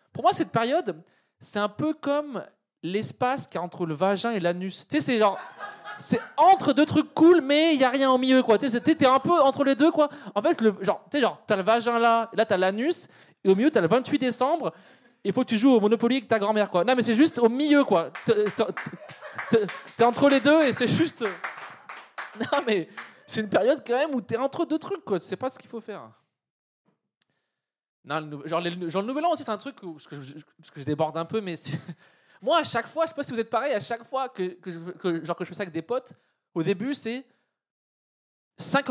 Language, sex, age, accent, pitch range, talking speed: French, male, 20-39, French, 180-270 Hz, 245 wpm